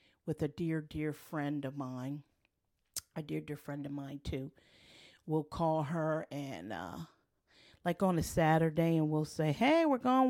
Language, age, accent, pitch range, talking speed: English, 40-59, American, 130-160 Hz, 170 wpm